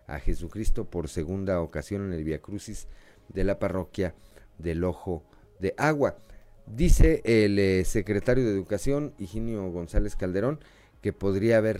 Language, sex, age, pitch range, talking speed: Spanish, male, 40-59, 85-105 Hz, 140 wpm